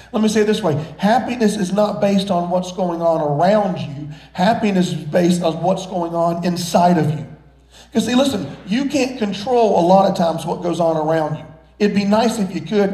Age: 40-59